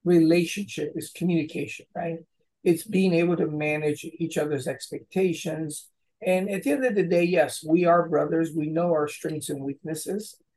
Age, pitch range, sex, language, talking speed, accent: 50-69, 155-185 Hz, male, English, 165 wpm, American